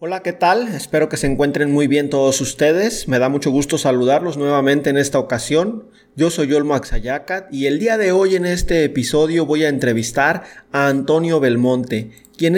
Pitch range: 140-185 Hz